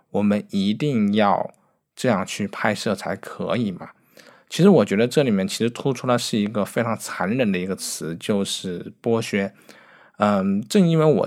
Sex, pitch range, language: male, 100-130 Hz, Chinese